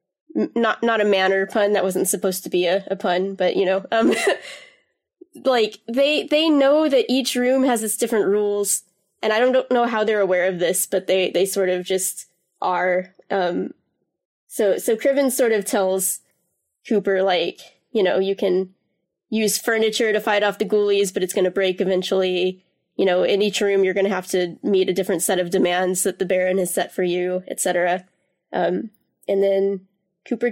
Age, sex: 10-29, female